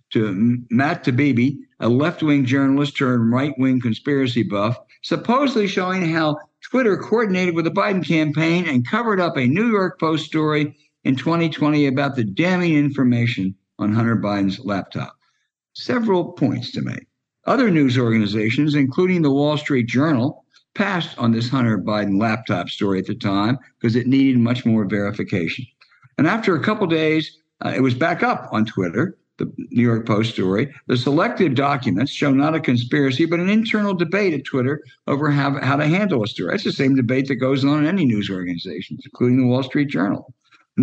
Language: English